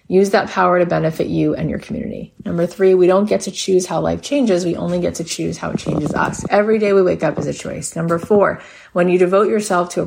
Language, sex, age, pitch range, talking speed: English, female, 30-49, 165-195 Hz, 260 wpm